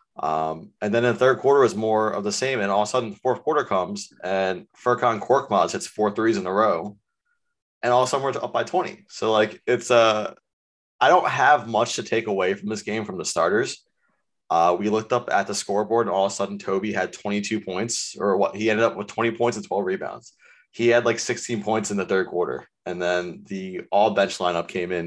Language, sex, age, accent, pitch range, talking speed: English, male, 20-39, American, 95-125 Hz, 235 wpm